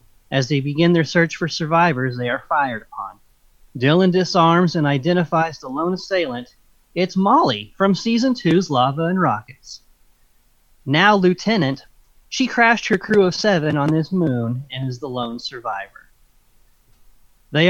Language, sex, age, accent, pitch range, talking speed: English, male, 30-49, American, 135-185 Hz, 145 wpm